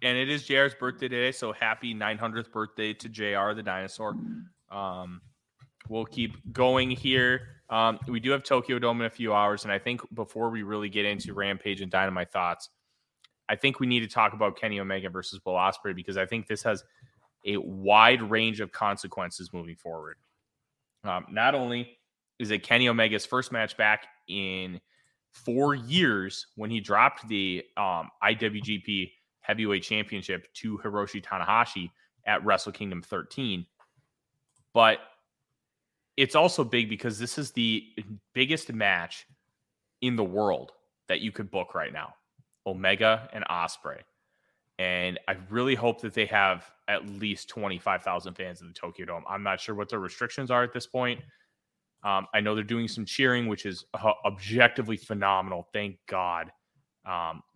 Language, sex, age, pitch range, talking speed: English, male, 20-39, 100-120 Hz, 165 wpm